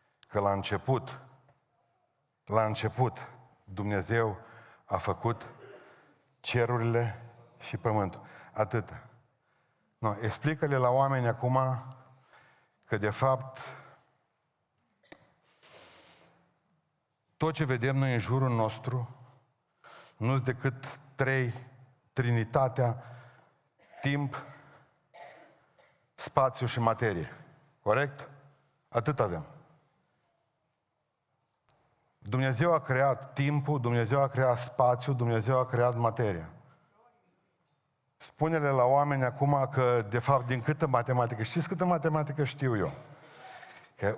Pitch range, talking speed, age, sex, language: 120-150 Hz, 90 wpm, 50-69, male, Romanian